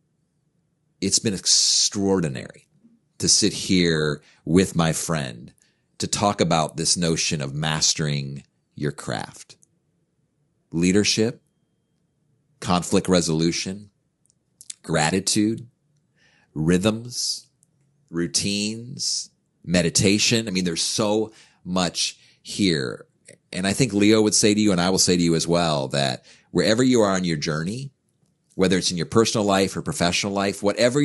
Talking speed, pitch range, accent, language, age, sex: 125 wpm, 90-120 Hz, American, English, 40-59, male